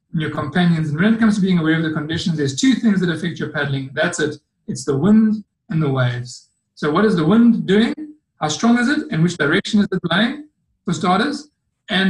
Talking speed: 230 wpm